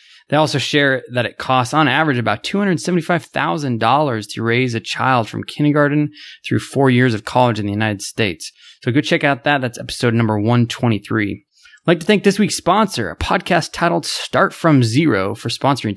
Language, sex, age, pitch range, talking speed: English, male, 20-39, 115-160 Hz, 185 wpm